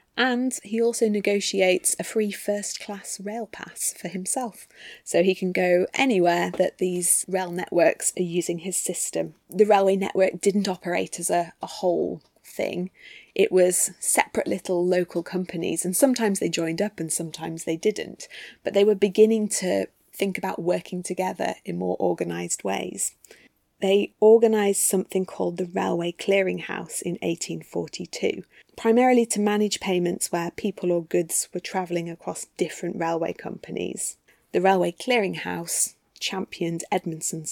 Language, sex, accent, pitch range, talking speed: English, female, British, 170-205 Hz, 145 wpm